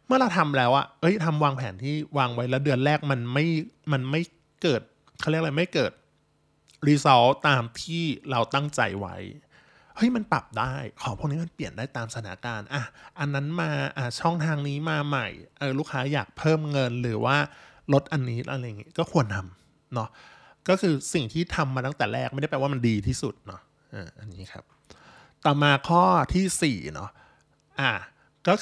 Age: 20-39